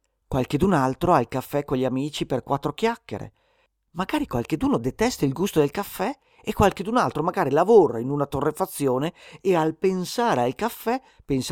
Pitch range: 125-185 Hz